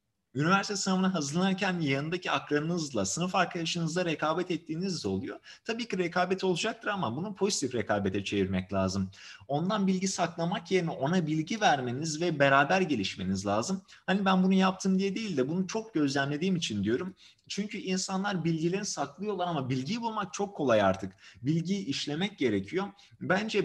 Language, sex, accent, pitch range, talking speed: Turkish, male, native, 140-190 Hz, 145 wpm